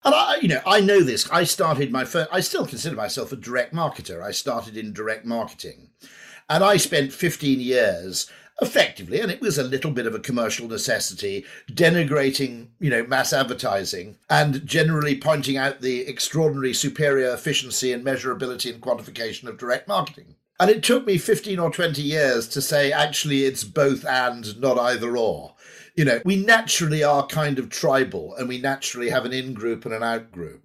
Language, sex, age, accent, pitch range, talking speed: English, male, 50-69, British, 125-170 Hz, 180 wpm